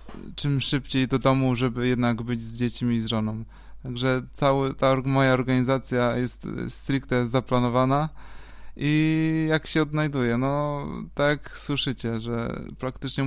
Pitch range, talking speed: 125-140 Hz, 135 wpm